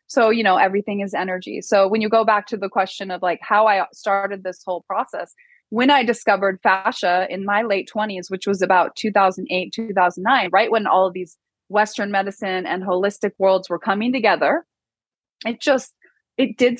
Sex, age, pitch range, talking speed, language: female, 20-39, 190-255 Hz, 185 wpm, English